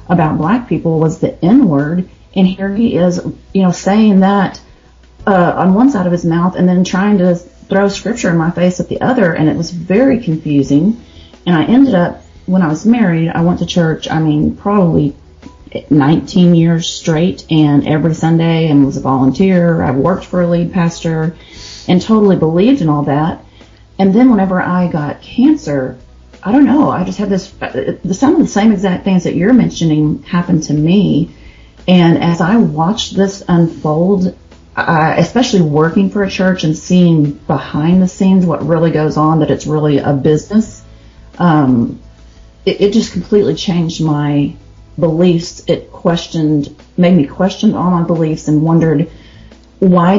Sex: female